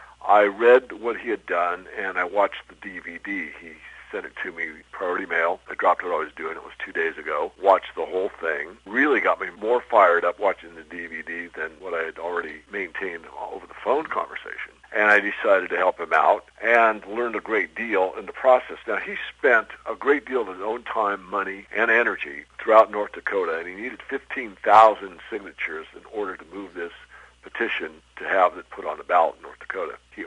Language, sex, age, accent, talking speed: English, male, 60-79, American, 210 wpm